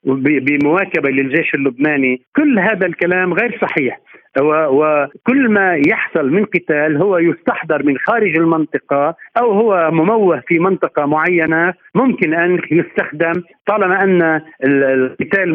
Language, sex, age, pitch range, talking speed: Arabic, male, 50-69, 150-195 Hz, 115 wpm